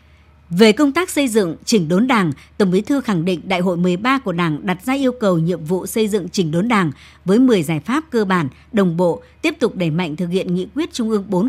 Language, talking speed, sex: Vietnamese, 250 wpm, male